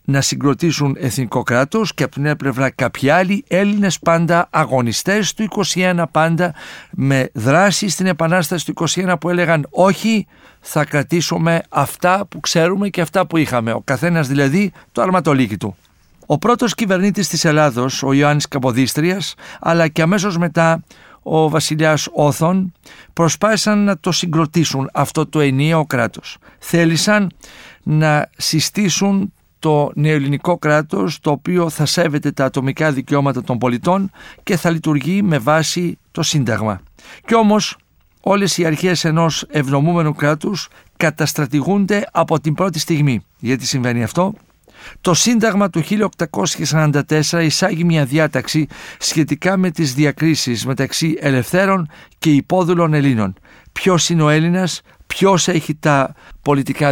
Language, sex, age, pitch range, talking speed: Greek, male, 60-79, 145-180 Hz, 130 wpm